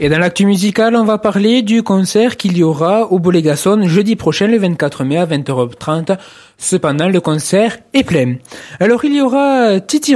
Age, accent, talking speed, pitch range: 20-39, French, 185 wpm, 165-220 Hz